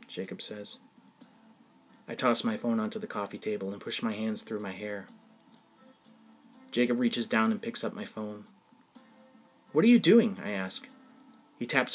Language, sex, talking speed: English, male, 165 wpm